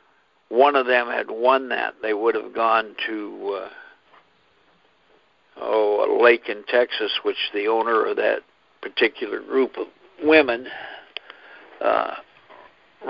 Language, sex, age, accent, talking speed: English, male, 60-79, American, 120 wpm